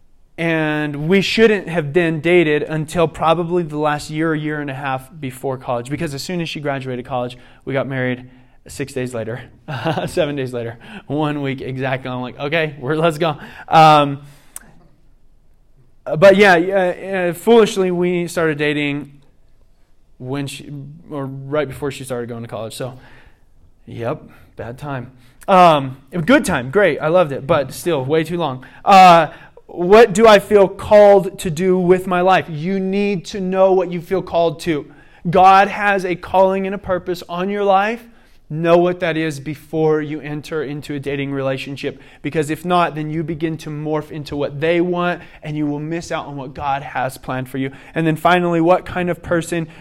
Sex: male